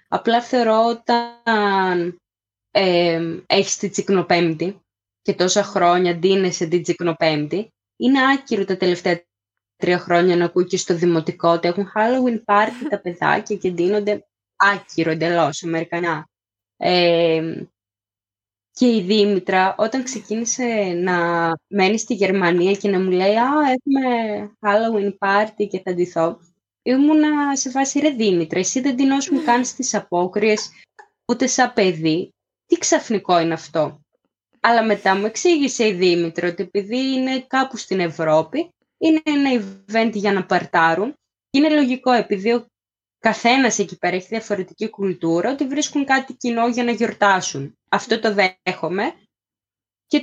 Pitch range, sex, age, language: 175-245 Hz, female, 20-39, Greek